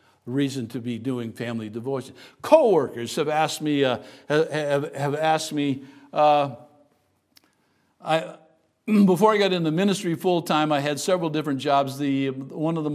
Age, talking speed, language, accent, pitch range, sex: 60-79, 155 wpm, English, American, 140-200 Hz, male